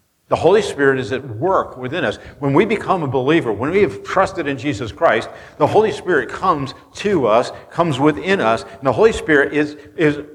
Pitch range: 110-155 Hz